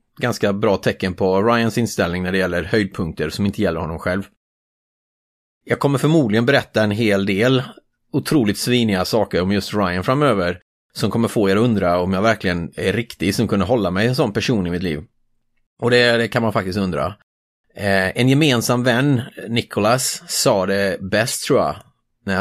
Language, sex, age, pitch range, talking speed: Swedish, male, 30-49, 100-130 Hz, 175 wpm